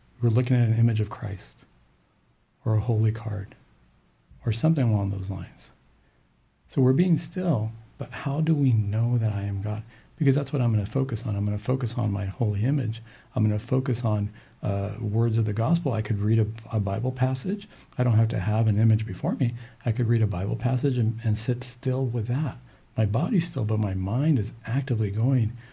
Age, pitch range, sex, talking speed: 50-69, 110-135 Hz, male, 210 wpm